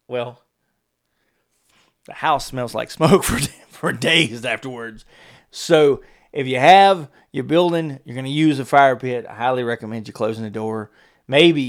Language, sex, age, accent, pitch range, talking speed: English, male, 30-49, American, 115-145 Hz, 160 wpm